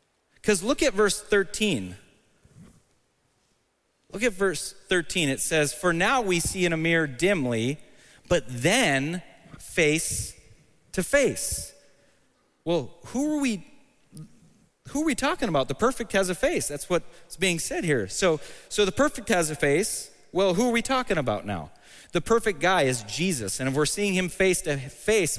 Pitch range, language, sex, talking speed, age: 145-195 Hz, English, male, 165 wpm, 30-49